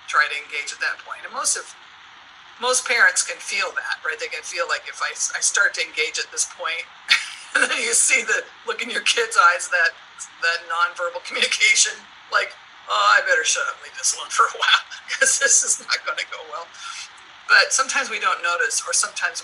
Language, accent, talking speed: English, American, 215 wpm